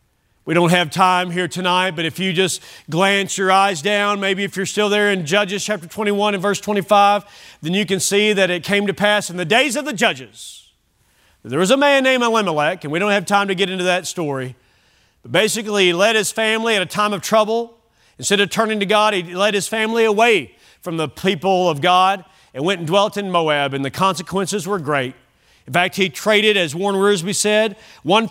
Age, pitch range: 40-59, 165-215 Hz